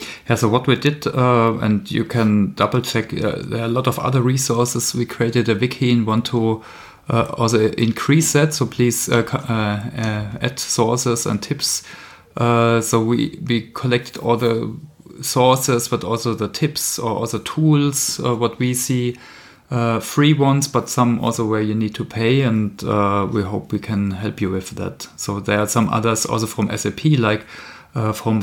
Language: English